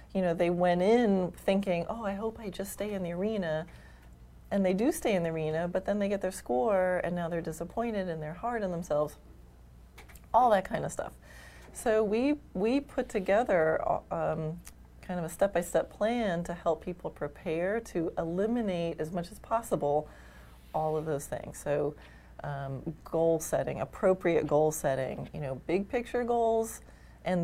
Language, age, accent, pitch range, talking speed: English, 30-49, American, 150-195 Hz, 175 wpm